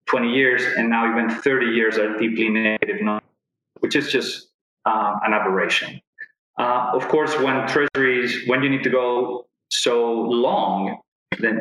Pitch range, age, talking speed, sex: 115-135 Hz, 30-49, 150 wpm, male